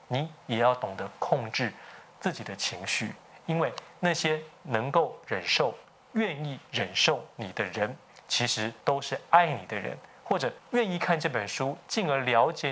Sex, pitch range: male, 115-160 Hz